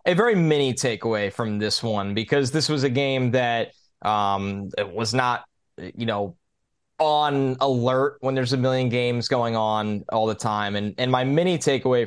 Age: 20-39